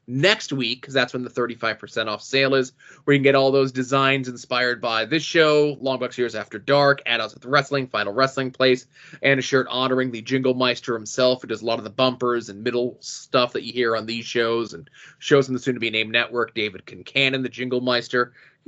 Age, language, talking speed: 20-39, English, 220 wpm